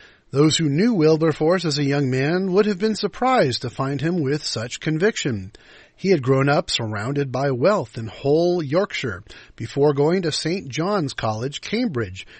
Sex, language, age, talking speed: male, English, 40-59, 170 wpm